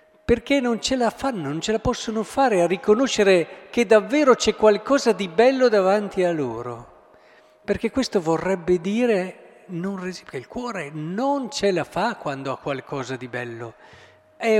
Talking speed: 155 wpm